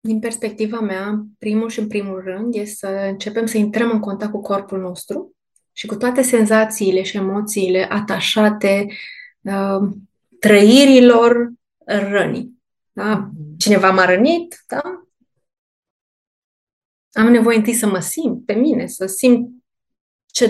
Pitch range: 200-260 Hz